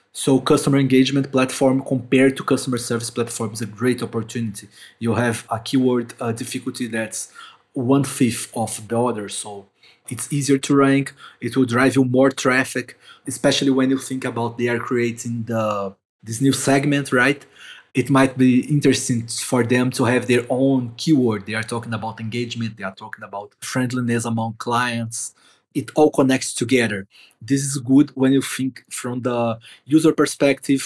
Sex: male